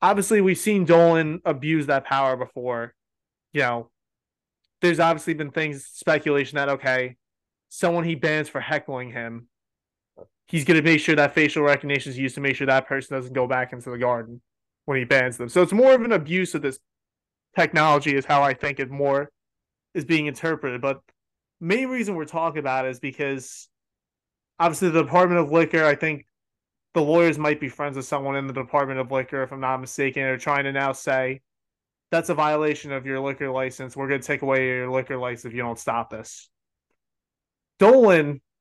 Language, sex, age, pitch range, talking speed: English, male, 20-39, 130-160 Hz, 195 wpm